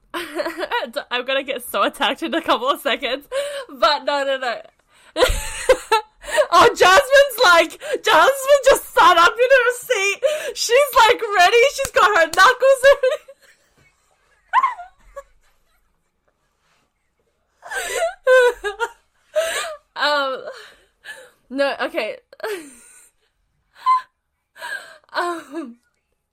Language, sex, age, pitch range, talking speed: English, female, 10-29, 230-340 Hz, 80 wpm